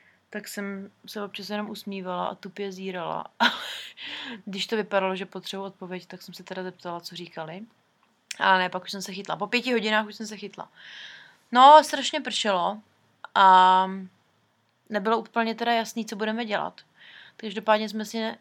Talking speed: 165 wpm